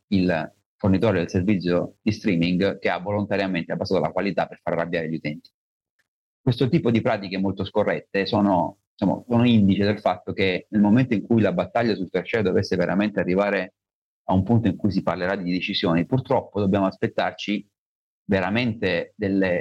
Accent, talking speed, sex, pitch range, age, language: native, 170 wpm, male, 90-105 Hz, 40-59, Italian